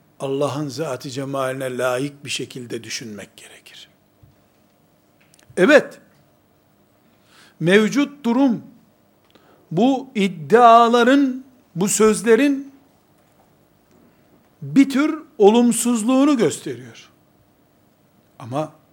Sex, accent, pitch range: male, native, 155-230 Hz